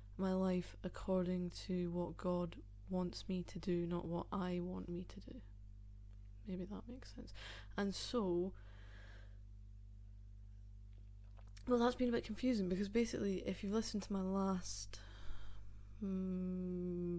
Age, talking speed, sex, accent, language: 20-39, 135 wpm, female, British, English